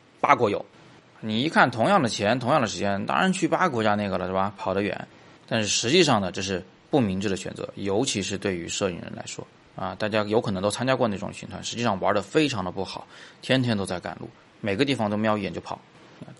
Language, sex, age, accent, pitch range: Chinese, male, 20-39, native, 95-120 Hz